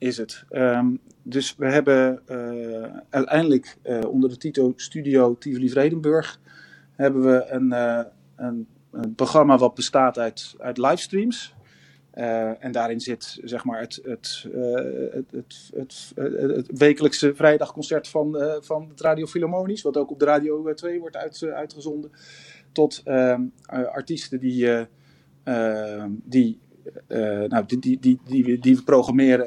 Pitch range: 120-150 Hz